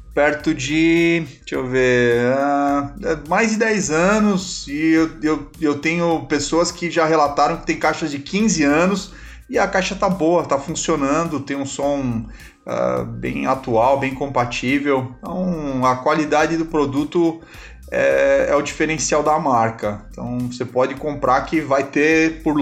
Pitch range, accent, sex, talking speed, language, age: 135-170 Hz, Brazilian, male, 155 wpm, Portuguese, 30-49